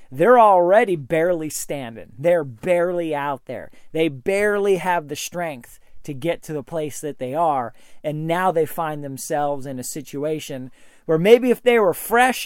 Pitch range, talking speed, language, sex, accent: 150-200 Hz, 170 wpm, English, male, American